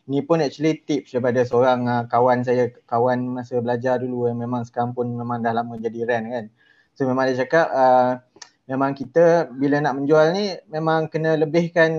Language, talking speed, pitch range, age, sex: English, 185 wpm, 125-155 Hz, 20-39, male